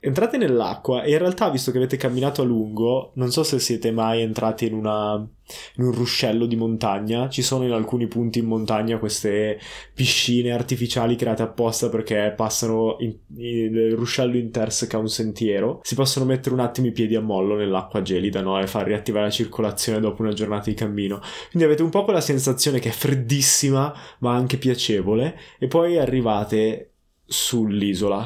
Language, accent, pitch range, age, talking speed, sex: Italian, native, 110-130 Hz, 20-39, 180 wpm, male